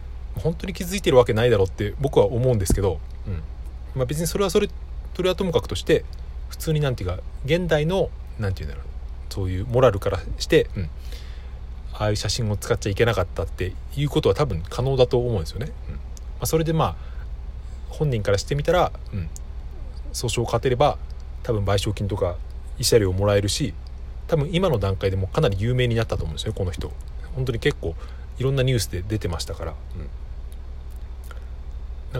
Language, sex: Japanese, male